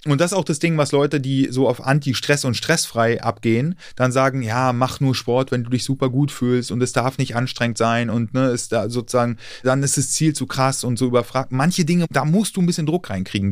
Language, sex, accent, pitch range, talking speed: German, male, German, 120-150 Hz, 250 wpm